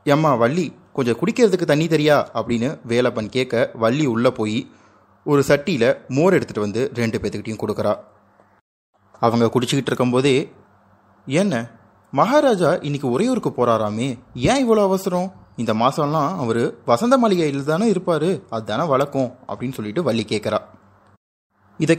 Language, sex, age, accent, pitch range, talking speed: Tamil, male, 30-49, native, 110-140 Hz, 120 wpm